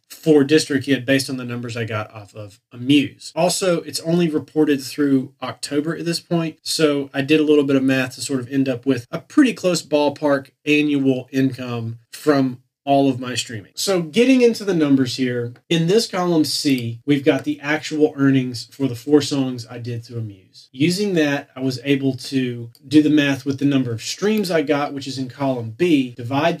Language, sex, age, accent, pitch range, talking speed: English, male, 30-49, American, 130-155 Hz, 205 wpm